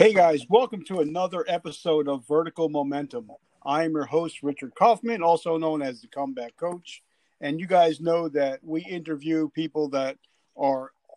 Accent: American